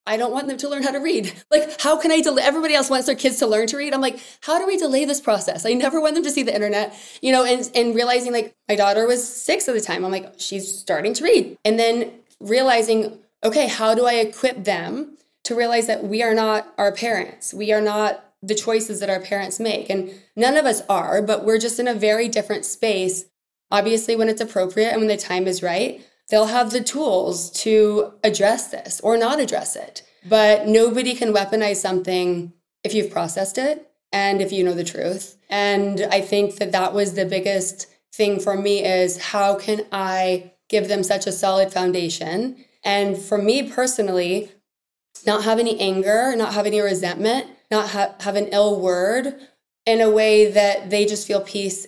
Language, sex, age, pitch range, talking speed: English, female, 20-39, 195-240 Hz, 205 wpm